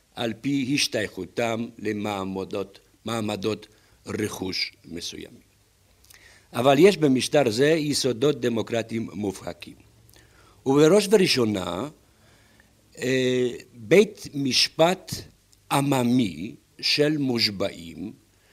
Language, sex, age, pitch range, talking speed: Hebrew, male, 60-79, 100-140 Hz, 65 wpm